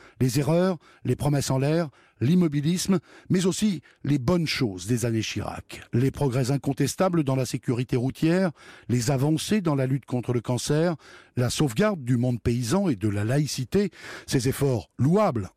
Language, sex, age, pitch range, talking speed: French, male, 60-79, 125-165 Hz, 160 wpm